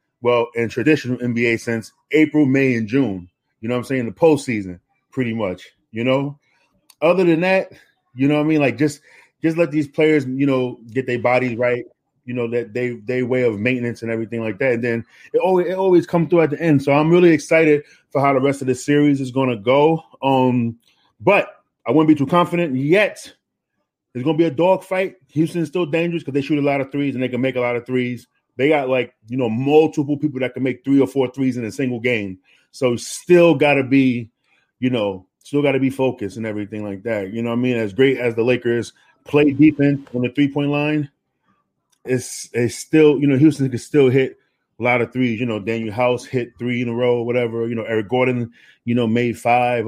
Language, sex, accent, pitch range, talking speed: English, male, American, 120-145 Hz, 230 wpm